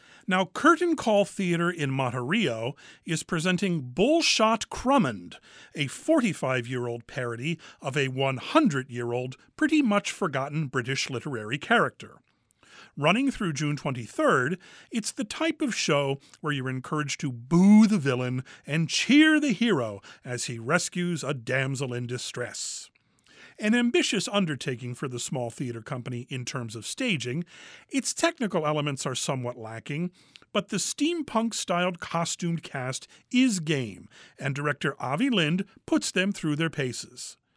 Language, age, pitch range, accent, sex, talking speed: English, 40-59, 130-210 Hz, American, male, 135 wpm